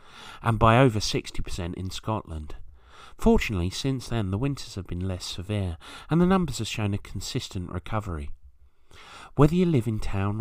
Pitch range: 80-115 Hz